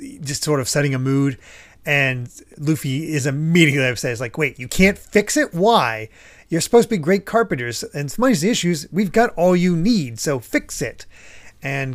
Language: English